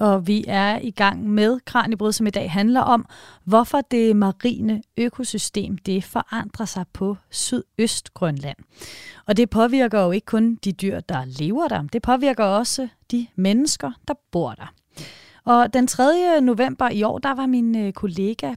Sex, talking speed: female, 160 wpm